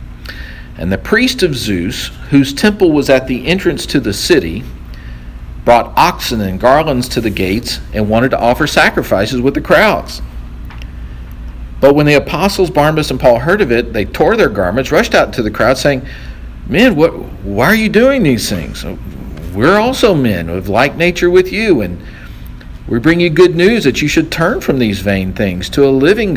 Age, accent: 50-69, American